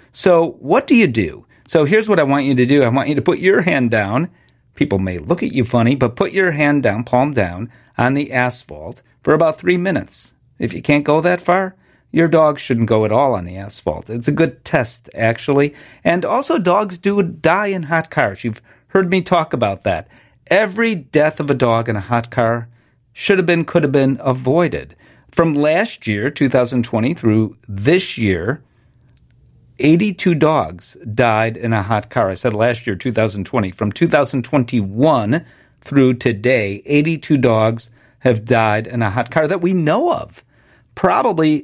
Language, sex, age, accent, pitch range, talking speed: English, male, 40-59, American, 115-165 Hz, 195 wpm